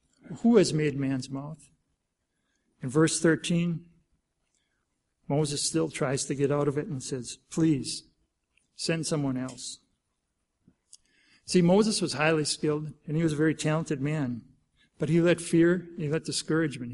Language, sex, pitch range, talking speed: English, male, 140-165 Hz, 145 wpm